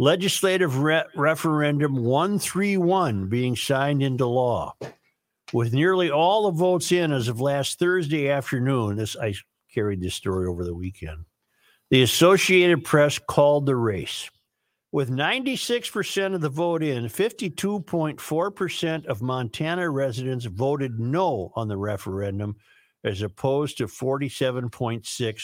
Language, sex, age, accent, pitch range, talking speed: English, male, 50-69, American, 115-155 Hz, 125 wpm